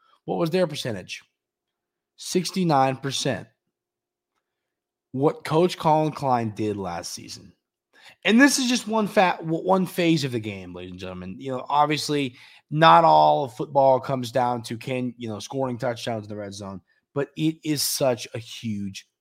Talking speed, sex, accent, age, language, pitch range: 160 wpm, male, American, 20-39, English, 110-160 Hz